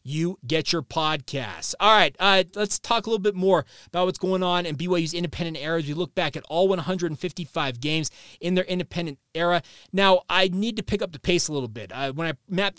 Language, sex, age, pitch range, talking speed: English, male, 30-49, 155-190 Hz, 225 wpm